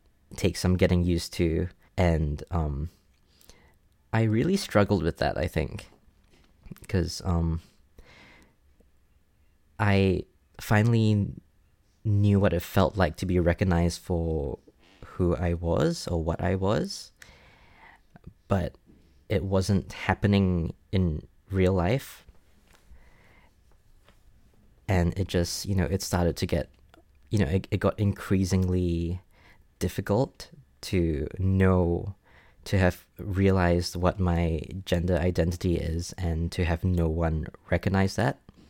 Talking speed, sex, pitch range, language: 115 wpm, male, 85-100 Hz, English